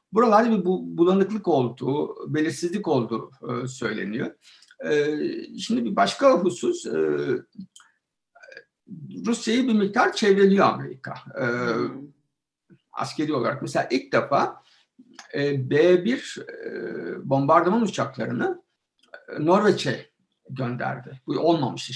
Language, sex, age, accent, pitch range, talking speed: Turkish, male, 60-79, native, 130-220 Hz, 95 wpm